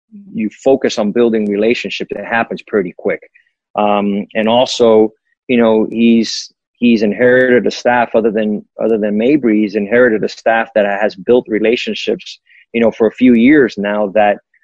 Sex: male